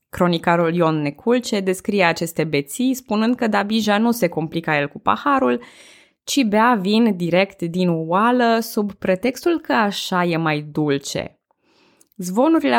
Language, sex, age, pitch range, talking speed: Romanian, female, 20-39, 160-220 Hz, 135 wpm